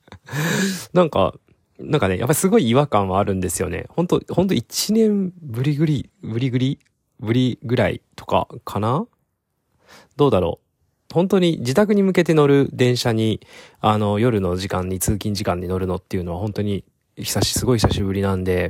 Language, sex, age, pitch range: Japanese, male, 20-39, 90-125 Hz